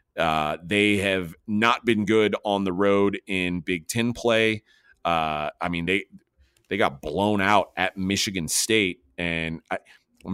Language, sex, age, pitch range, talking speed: English, male, 30-49, 95-115 Hz, 155 wpm